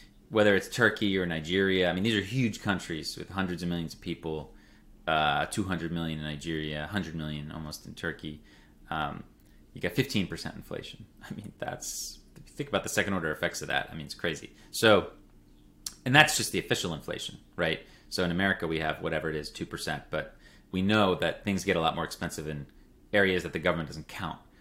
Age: 30-49